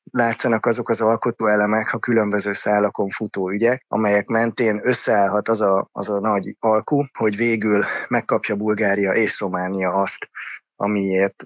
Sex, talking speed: male, 130 wpm